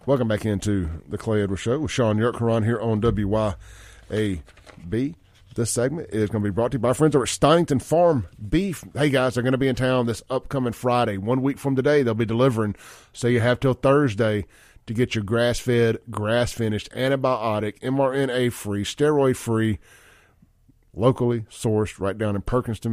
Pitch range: 105-125 Hz